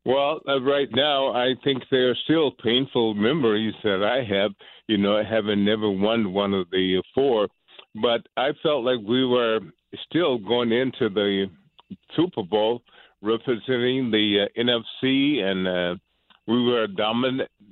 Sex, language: male, English